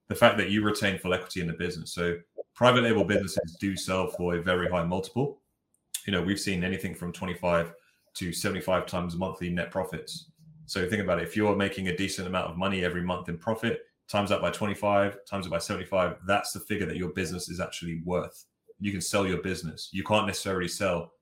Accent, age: British, 20-39